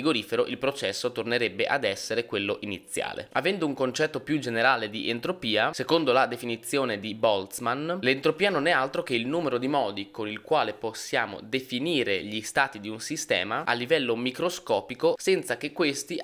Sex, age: male, 20-39